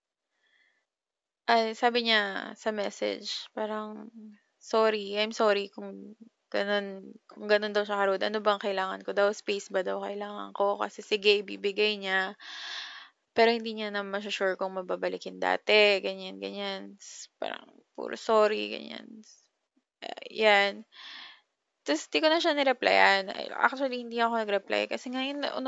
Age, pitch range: 20-39, 190-235 Hz